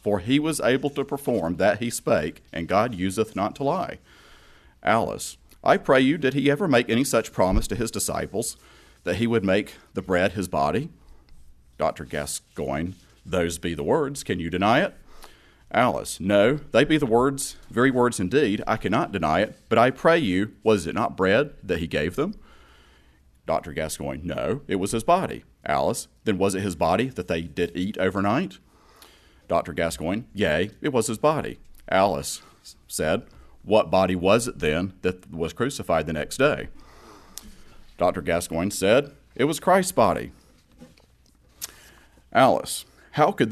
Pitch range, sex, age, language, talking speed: 85-130 Hz, male, 40-59, English, 165 wpm